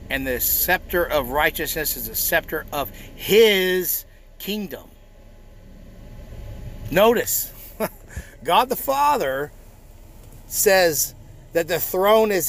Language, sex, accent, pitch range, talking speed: English, male, American, 105-150 Hz, 95 wpm